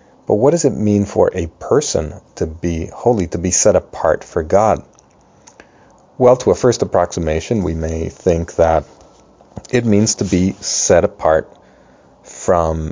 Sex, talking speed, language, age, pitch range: male, 155 wpm, English, 40-59, 90-110 Hz